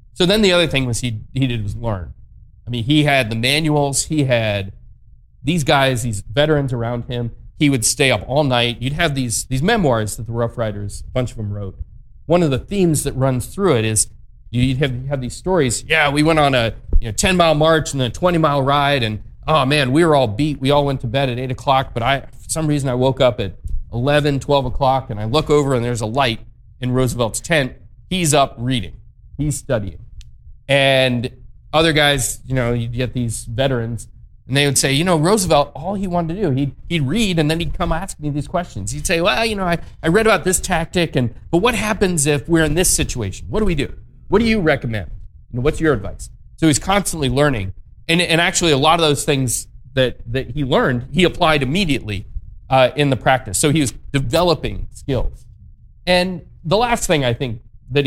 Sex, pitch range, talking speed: male, 115-155 Hz, 225 wpm